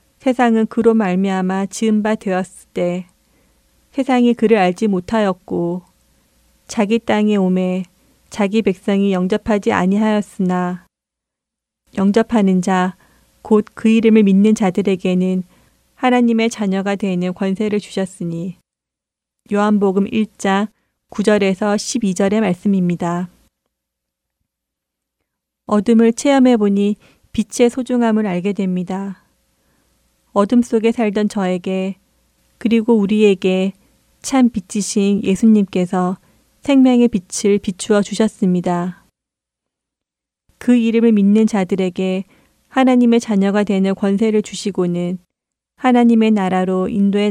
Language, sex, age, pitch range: Korean, female, 30-49, 185-220 Hz